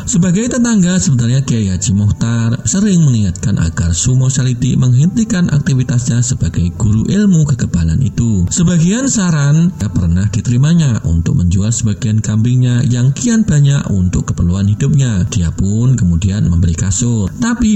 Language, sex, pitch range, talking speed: Indonesian, male, 95-135 Hz, 130 wpm